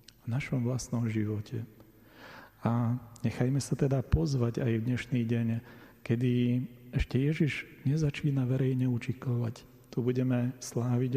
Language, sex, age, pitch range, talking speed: Slovak, male, 40-59, 115-125 Hz, 120 wpm